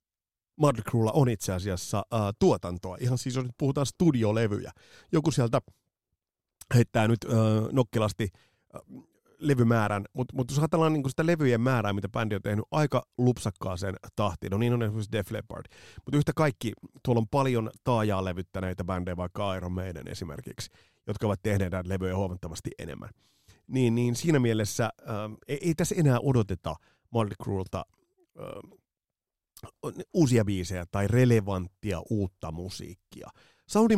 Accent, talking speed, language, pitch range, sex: native, 140 wpm, Finnish, 95-125 Hz, male